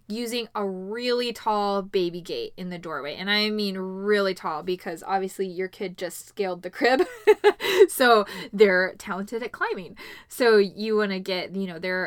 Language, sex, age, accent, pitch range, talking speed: English, female, 10-29, American, 195-260 Hz, 175 wpm